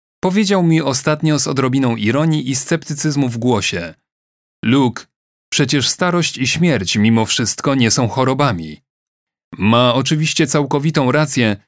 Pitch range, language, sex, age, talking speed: 115-150 Hz, Polish, male, 30-49, 125 wpm